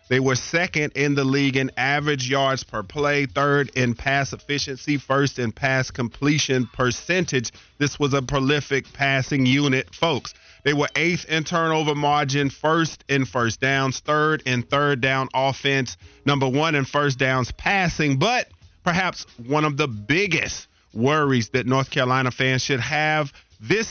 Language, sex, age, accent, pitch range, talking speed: English, male, 40-59, American, 125-145 Hz, 155 wpm